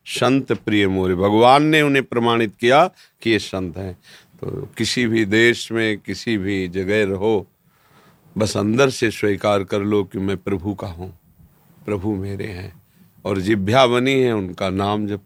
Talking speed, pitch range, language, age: 165 wpm, 100-120 Hz, Hindi, 40-59